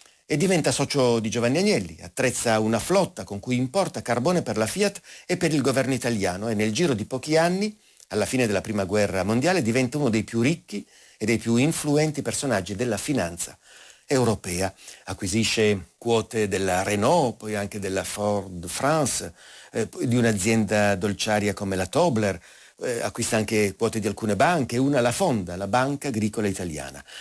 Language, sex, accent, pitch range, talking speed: Italian, male, native, 100-140 Hz, 170 wpm